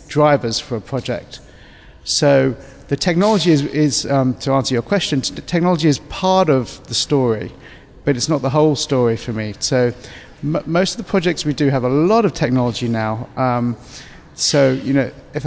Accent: British